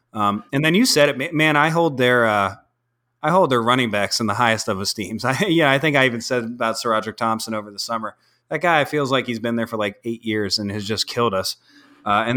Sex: male